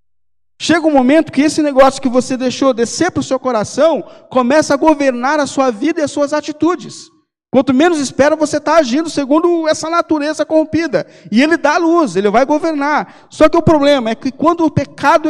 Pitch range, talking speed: 175-265 Hz, 195 wpm